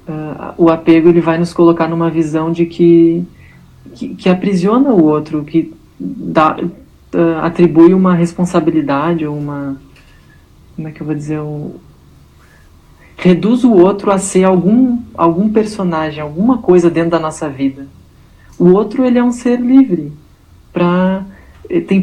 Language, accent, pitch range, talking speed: Portuguese, Brazilian, 155-190 Hz, 145 wpm